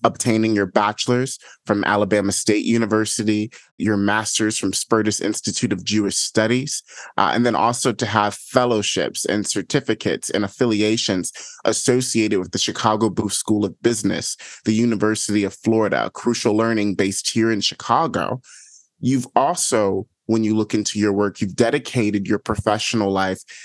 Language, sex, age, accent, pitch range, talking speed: English, male, 30-49, American, 105-115 Hz, 145 wpm